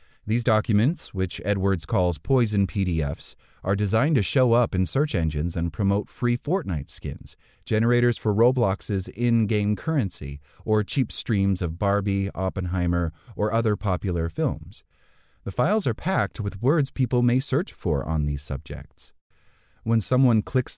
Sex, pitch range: male, 90-120 Hz